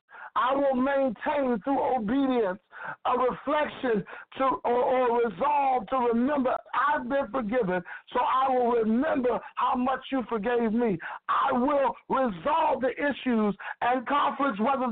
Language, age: English, 60-79